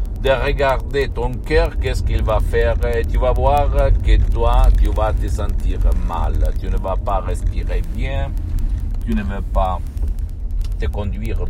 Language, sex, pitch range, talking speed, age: Italian, male, 75-100 Hz, 155 wpm, 60-79